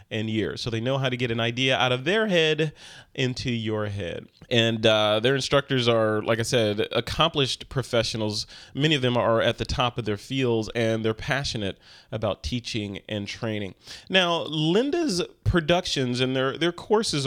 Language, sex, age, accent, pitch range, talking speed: English, male, 30-49, American, 115-160 Hz, 175 wpm